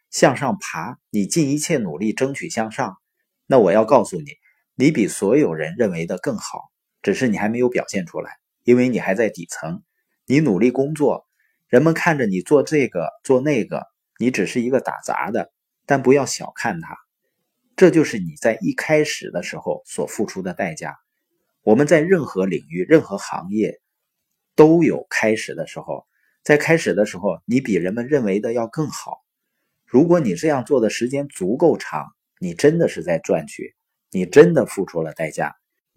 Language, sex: Chinese, male